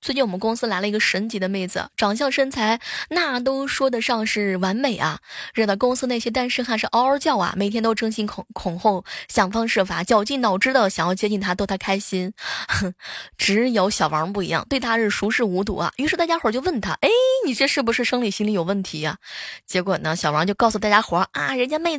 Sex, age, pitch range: female, 20-39, 185-250 Hz